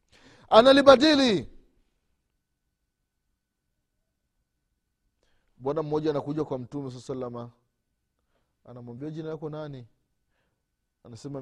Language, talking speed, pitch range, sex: Swahili, 65 wpm, 105-165 Hz, male